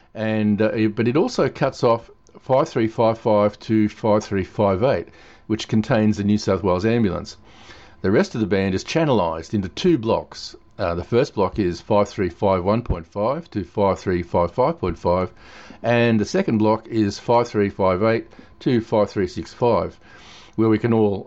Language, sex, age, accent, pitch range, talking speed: English, male, 50-69, Australian, 95-115 Hz, 135 wpm